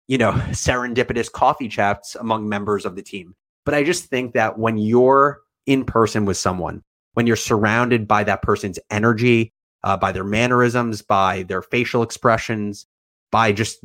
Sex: male